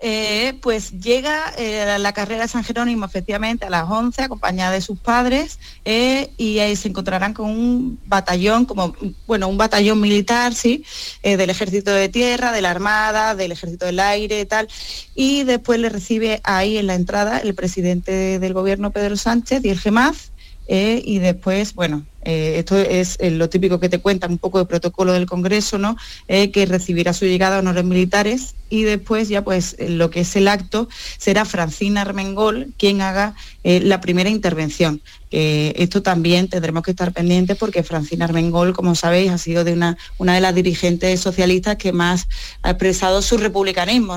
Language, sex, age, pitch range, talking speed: Spanish, female, 30-49, 180-215 Hz, 185 wpm